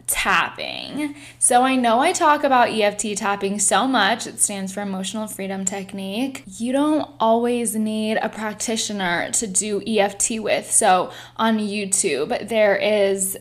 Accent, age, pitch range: American, 10-29, 205-245 Hz